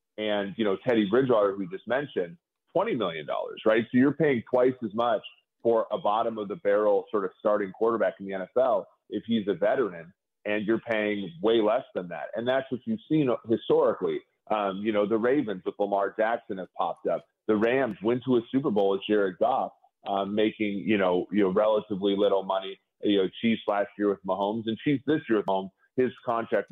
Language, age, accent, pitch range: English, 30-49, American, 100-120 Hz